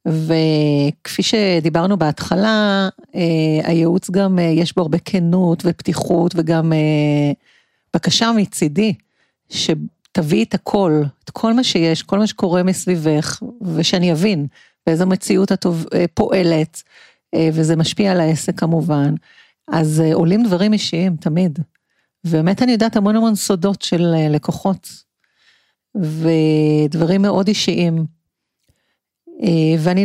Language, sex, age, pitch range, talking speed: Hebrew, female, 40-59, 160-195 Hz, 115 wpm